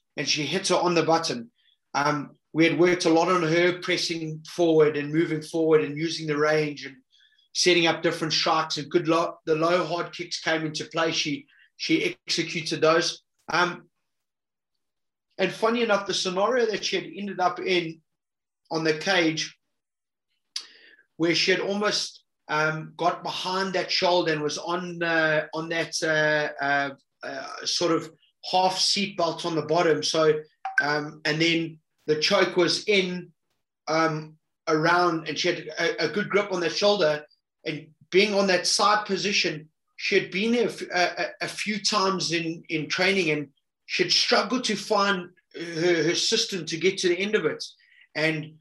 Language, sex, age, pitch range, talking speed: English, male, 30-49, 155-185 Hz, 170 wpm